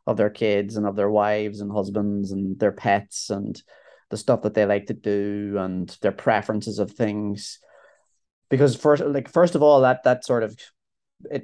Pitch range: 100-130 Hz